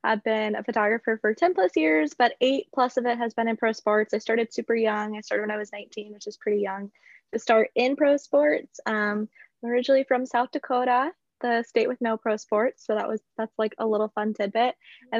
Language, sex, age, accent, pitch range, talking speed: English, female, 10-29, American, 205-240 Hz, 235 wpm